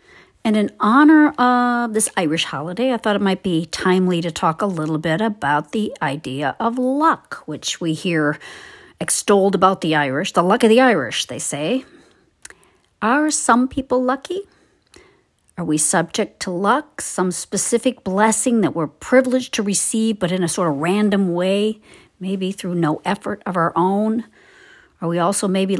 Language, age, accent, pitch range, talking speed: English, 50-69, American, 170-225 Hz, 165 wpm